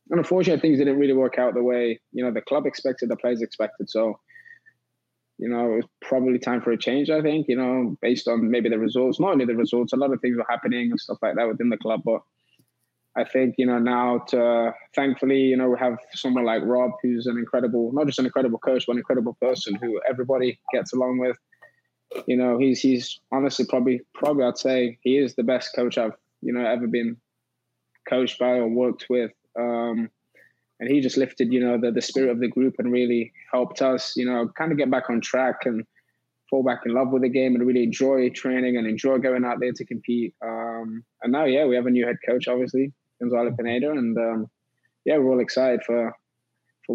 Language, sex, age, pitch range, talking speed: English, male, 20-39, 120-130 Hz, 225 wpm